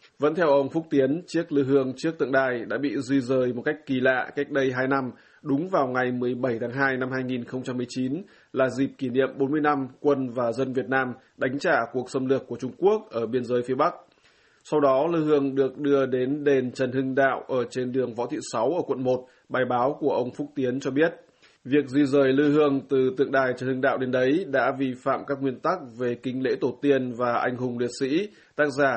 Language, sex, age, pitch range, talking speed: Vietnamese, male, 20-39, 125-140 Hz, 235 wpm